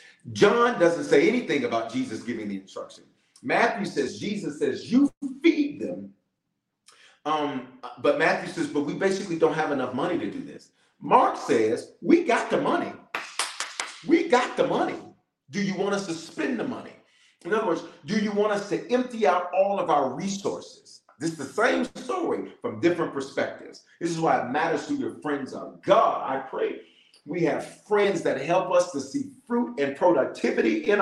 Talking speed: 180 wpm